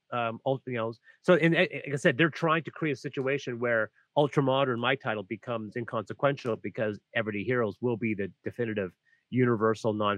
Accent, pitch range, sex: American, 120-150 Hz, male